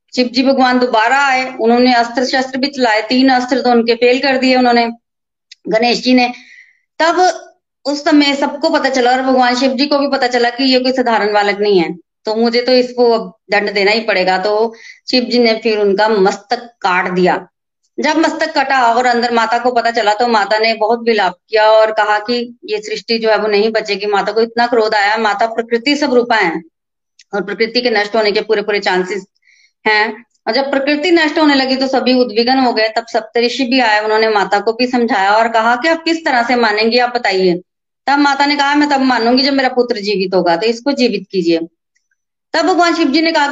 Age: 20-39